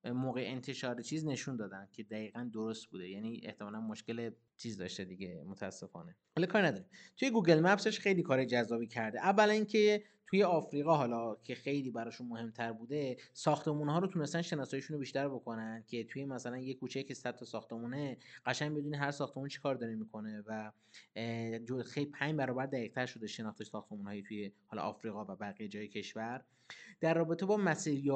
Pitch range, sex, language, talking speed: 110-140 Hz, male, Persian, 170 wpm